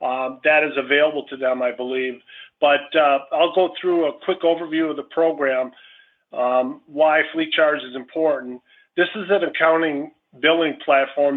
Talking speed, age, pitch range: 165 wpm, 40-59, 140-165 Hz